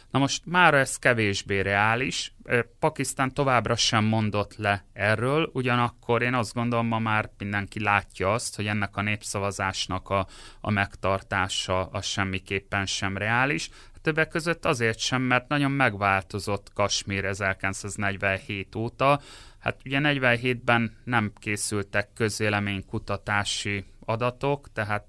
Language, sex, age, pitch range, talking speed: Hungarian, male, 30-49, 100-120 Hz, 120 wpm